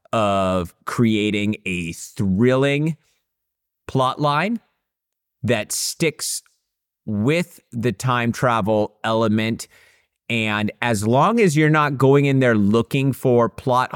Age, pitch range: 30-49, 100-130 Hz